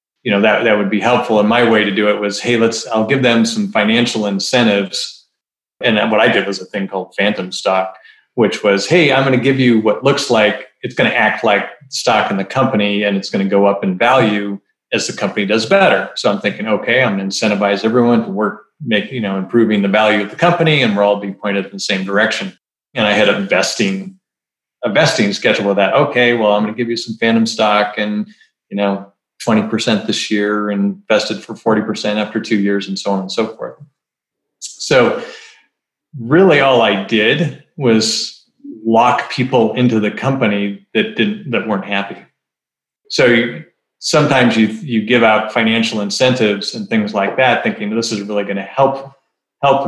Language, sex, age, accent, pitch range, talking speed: English, male, 40-59, American, 100-120 Hz, 200 wpm